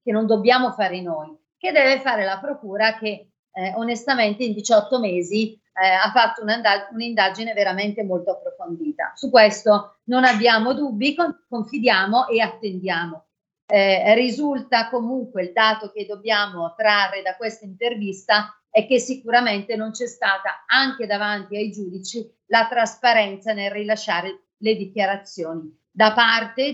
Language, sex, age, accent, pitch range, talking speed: Italian, female, 40-59, native, 195-235 Hz, 135 wpm